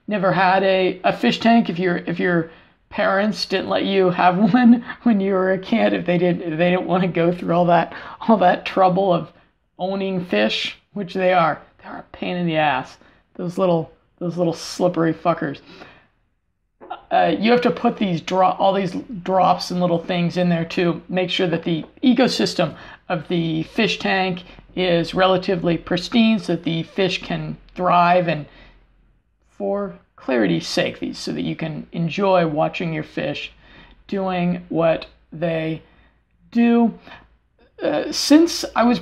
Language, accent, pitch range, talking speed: English, American, 175-210 Hz, 165 wpm